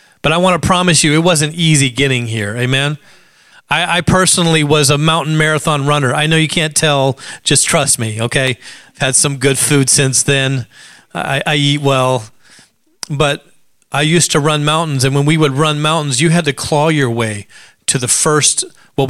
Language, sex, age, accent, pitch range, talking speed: English, male, 40-59, American, 130-155 Hz, 190 wpm